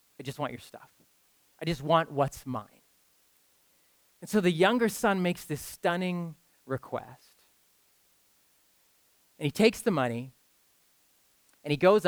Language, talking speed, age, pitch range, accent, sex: English, 135 wpm, 30-49, 145-210 Hz, American, male